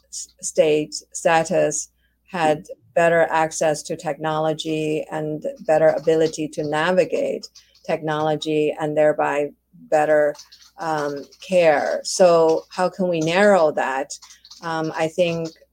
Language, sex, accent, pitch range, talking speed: English, female, American, 155-170 Hz, 105 wpm